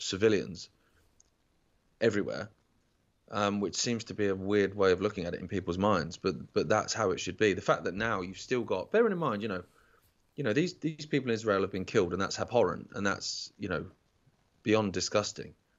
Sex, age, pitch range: male, 20-39, 95-115 Hz